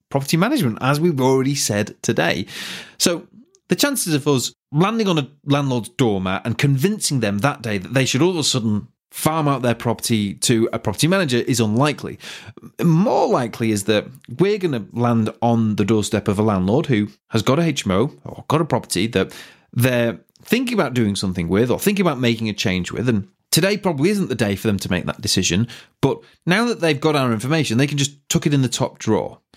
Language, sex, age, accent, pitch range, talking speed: English, male, 30-49, British, 115-170 Hz, 210 wpm